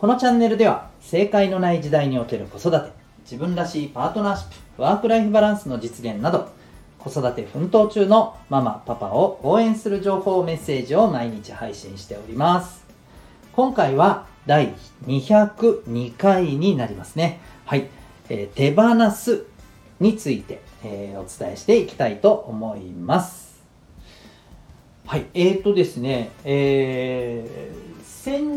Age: 40-59